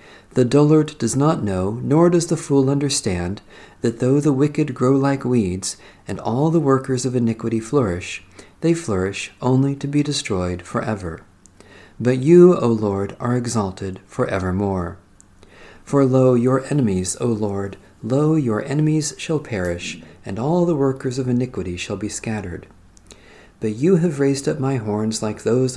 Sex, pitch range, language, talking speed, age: male, 95-135 Hz, English, 160 wpm, 50-69